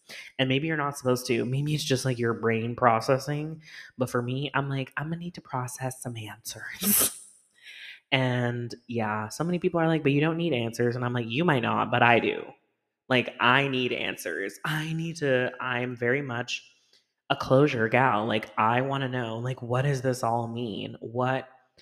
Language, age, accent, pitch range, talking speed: English, 20-39, American, 115-140 Hz, 195 wpm